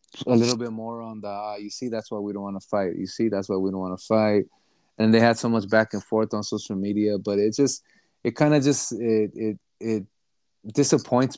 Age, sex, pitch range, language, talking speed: 20-39, male, 100-115 Hz, English, 250 wpm